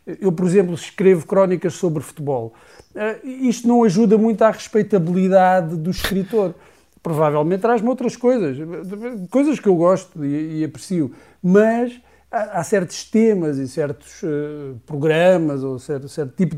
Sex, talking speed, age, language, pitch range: male, 145 wpm, 50-69, Portuguese, 145-200 Hz